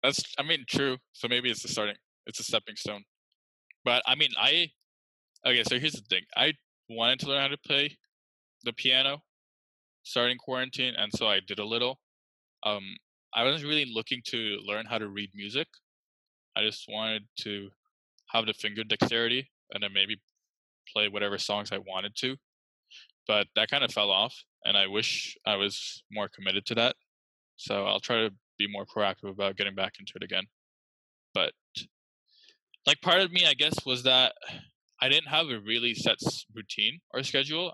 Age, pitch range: 20-39, 100-130 Hz